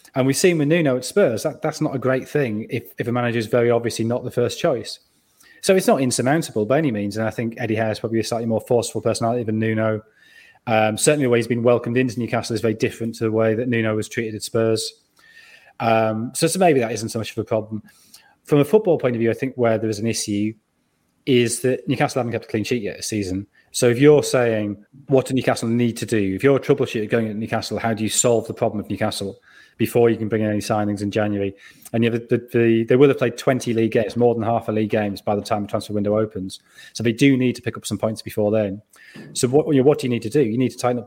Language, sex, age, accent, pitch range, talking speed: English, male, 30-49, British, 110-125 Hz, 275 wpm